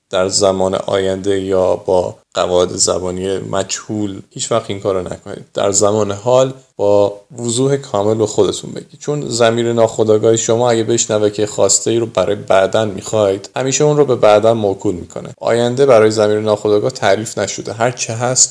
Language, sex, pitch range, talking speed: Persian, male, 100-120 Hz, 160 wpm